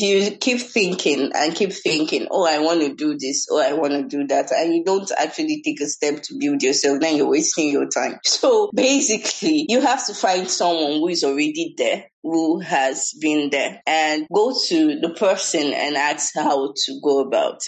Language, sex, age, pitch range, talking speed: English, female, 20-39, 155-260 Hz, 200 wpm